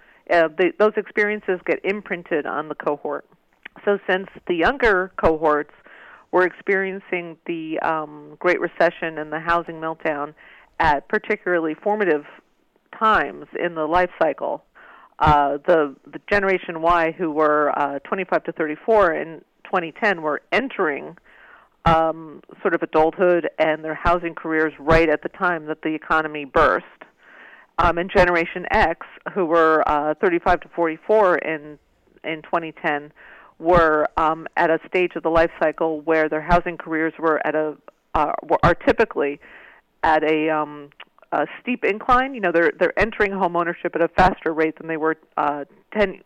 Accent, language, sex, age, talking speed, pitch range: American, English, female, 40-59, 150 wpm, 155-185 Hz